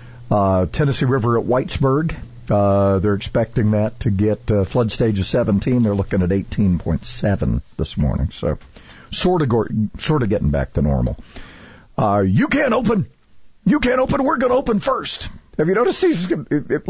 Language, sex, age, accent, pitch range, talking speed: English, male, 50-69, American, 110-170 Hz, 175 wpm